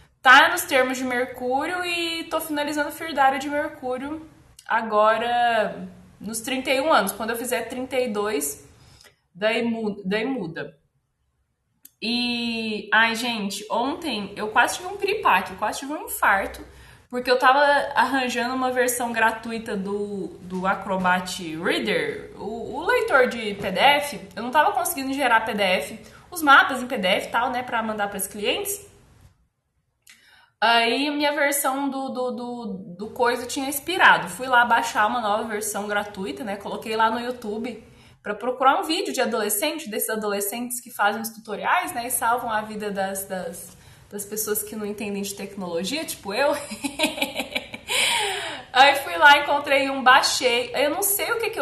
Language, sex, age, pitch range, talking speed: Portuguese, female, 20-39, 210-285 Hz, 150 wpm